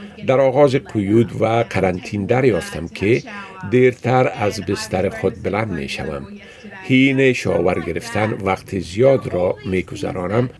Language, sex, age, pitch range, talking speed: Persian, male, 50-69, 95-125 Hz, 130 wpm